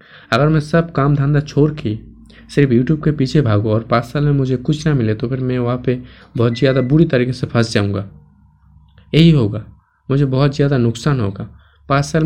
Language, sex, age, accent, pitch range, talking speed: Hindi, male, 20-39, native, 115-150 Hz, 200 wpm